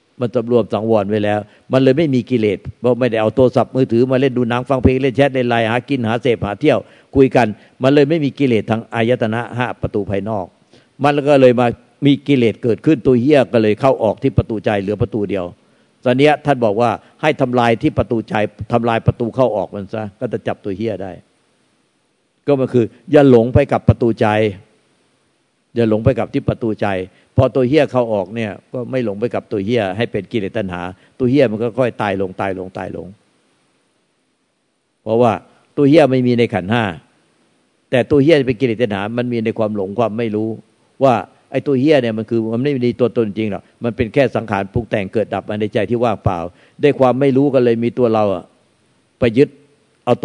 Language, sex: Thai, male